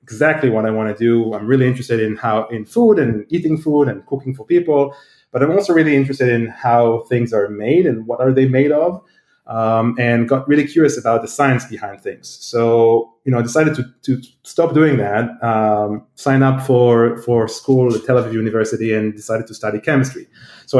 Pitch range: 115-145 Hz